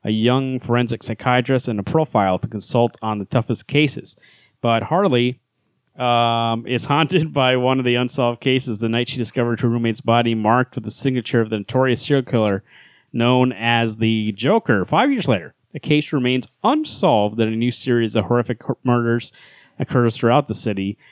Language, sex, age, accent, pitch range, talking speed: English, male, 30-49, American, 115-135 Hz, 175 wpm